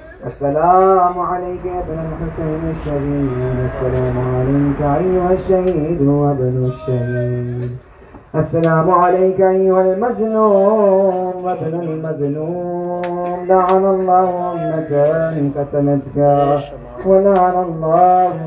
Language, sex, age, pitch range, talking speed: Urdu, male, 20-39, 140-185 Hz, 80 wpm